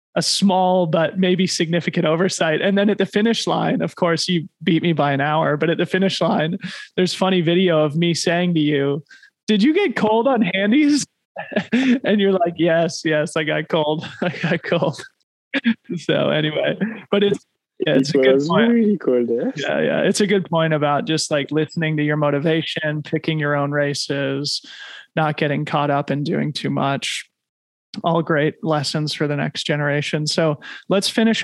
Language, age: English, 20-39